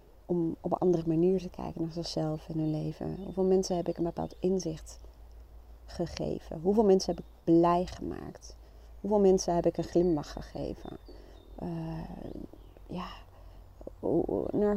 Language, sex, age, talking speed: Dutch, female, 30-49, 140 wpm